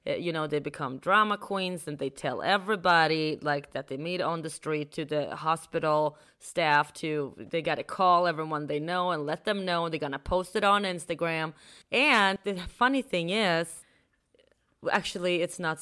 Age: 30-49